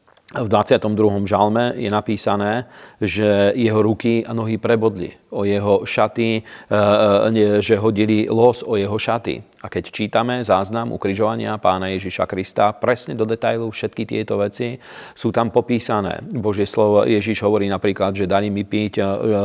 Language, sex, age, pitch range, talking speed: Slovak, male, 40-59, 100-110 Hz, 140 wpm